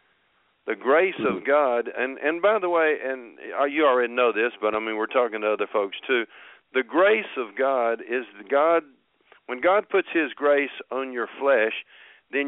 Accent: American